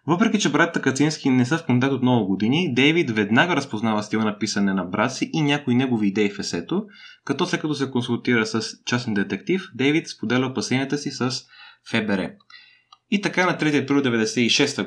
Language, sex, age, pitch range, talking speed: Bulgarian, male, 20-39, 115-150 Hz, 180 wpm